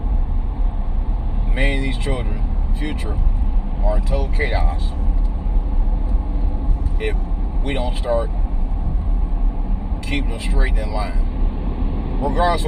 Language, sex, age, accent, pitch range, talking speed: English, male, 30-49, American, 70-95 Hz, 95 wpm